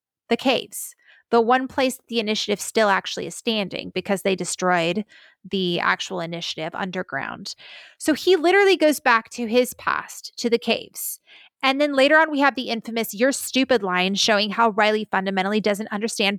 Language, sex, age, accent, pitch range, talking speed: English, female, 30-49, American, 210-270 Hz, 170 wpm